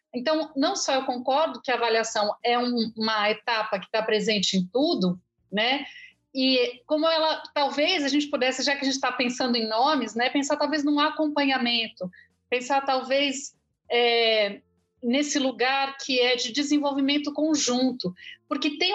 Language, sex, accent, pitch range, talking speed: Portuguese, female, Brazilian, 230-300 Hz, 160 wpm